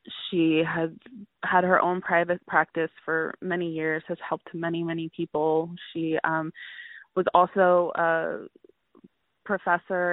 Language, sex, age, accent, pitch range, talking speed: English, female, 20-39, American, 160-190 Hz, 125 wpm